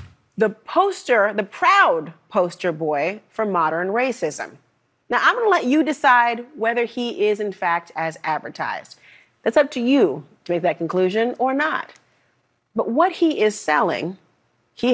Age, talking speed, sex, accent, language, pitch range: 40-59, 155 wpm, female, American, English, 195-275 Hz